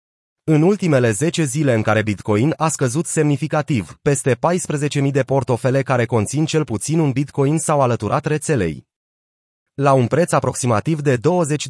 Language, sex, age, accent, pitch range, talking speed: Romanian, male, 30-49, native, 120-150 Hz, 150 wpm